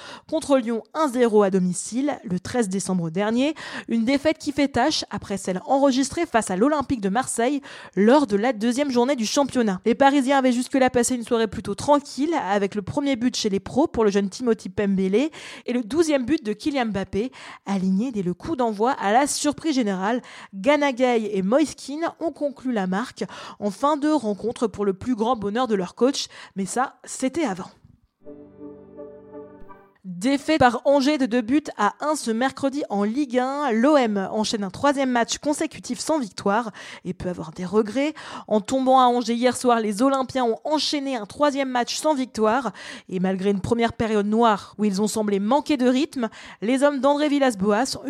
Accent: French